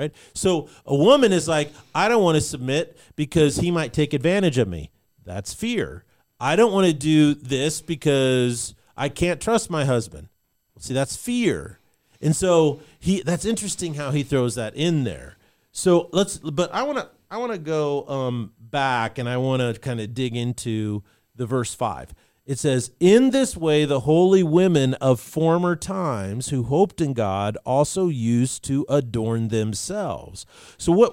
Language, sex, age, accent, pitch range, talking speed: English, male, 40-59, American, 125-170 Hz, 170 wpm